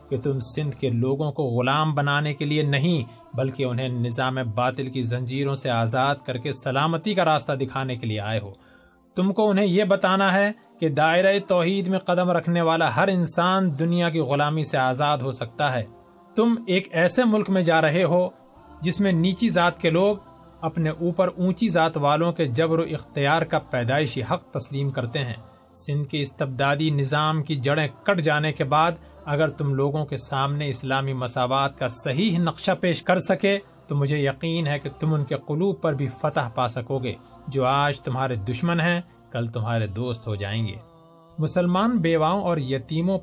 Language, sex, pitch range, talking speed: Urdu, male, 130-170 Hz, 185 wpm